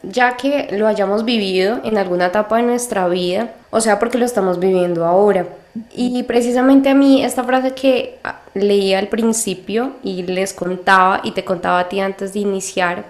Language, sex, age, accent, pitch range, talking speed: Spanish, female, 10-29, Colombian, 190-225 Hz, 180 wpm